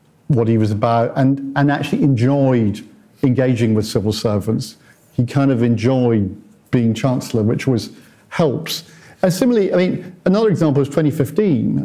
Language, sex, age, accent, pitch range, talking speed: English, male, 50-69, British, 115-150 Hz, 145 wpm